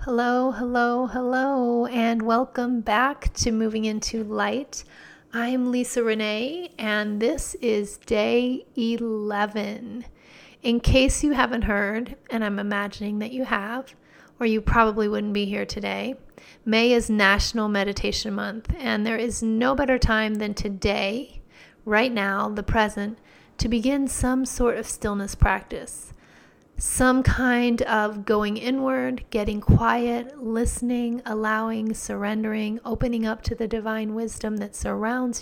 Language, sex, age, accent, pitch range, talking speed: English, female, 30-49, American, 210-240 Hz, 130 wpm